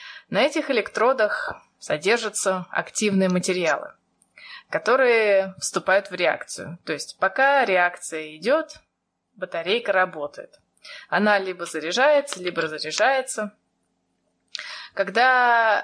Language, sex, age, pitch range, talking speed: Russian, female, 20-39, 180-240 Hz, 85 wpm